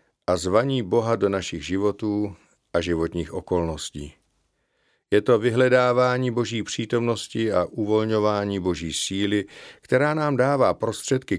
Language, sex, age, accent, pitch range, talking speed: Czech, male, 50-69, native, 95-125 Hz, 115 wpm